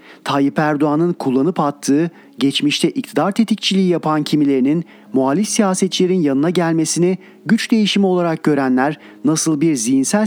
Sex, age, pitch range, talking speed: male, 40-59, 140-190 Hz, 115 wpm